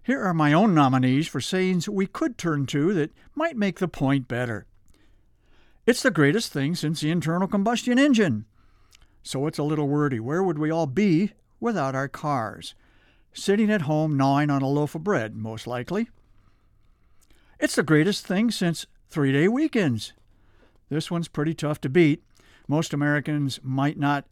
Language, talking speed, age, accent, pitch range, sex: English, 165 wpm, 60-79, American, 130-180 Hz, male